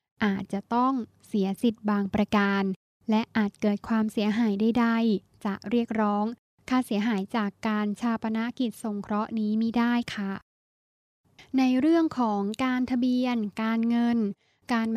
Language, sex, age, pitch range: Thai, female, 10-29, 220-255 Hz